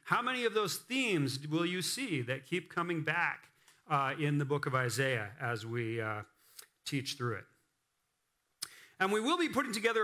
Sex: male